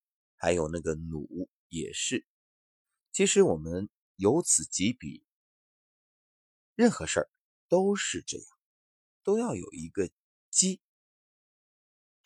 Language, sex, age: Chinese, male, 30-49